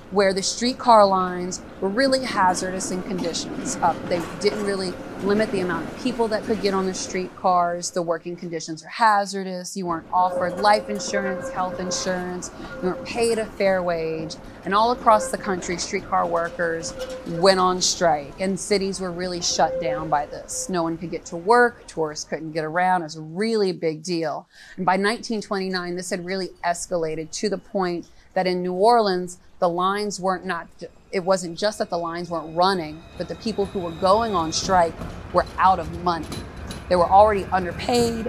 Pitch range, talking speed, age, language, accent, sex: 175-205 Hz, 185 wpm, 30-49, English, American, female